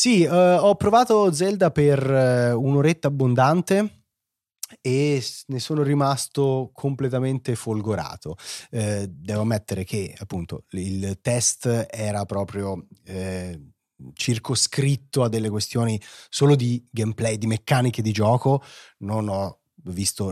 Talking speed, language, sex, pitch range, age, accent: 105 wpm, Italian, male, 100-130 Hz, 30-49, native